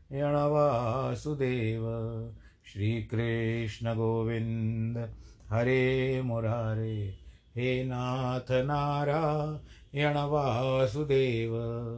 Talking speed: 55 wpm